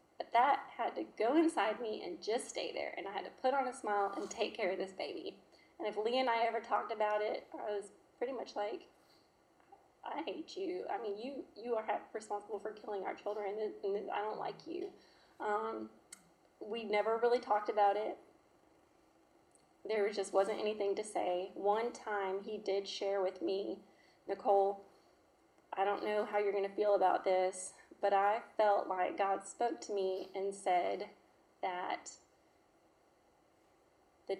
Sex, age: female, 20-39